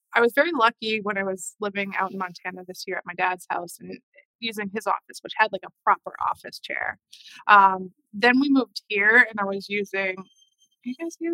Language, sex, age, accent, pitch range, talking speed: English, female, 20-39, American, 195-250 Hz, 215 wpm